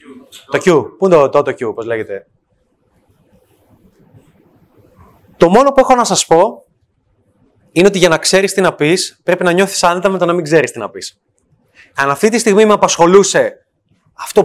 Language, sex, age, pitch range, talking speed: Greek, male, 20-39, 155-220 Hz, 175 wpm